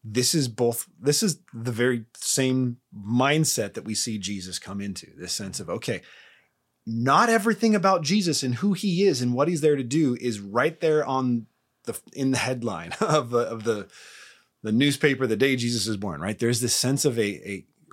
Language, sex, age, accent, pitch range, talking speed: English, male, 30-49, American, 100-145 Hz, 195 wpm